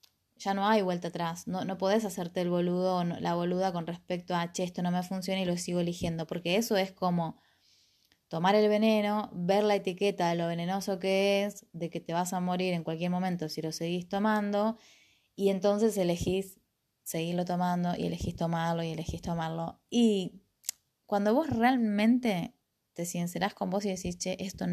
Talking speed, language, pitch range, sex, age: 185 wpm, Spanish, 175-210 Hz, female, 20-39